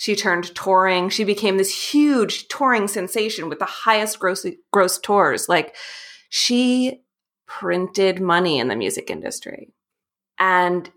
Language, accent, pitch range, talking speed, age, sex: English, American, 180-220 Hz, 130 wpm, 30-49, female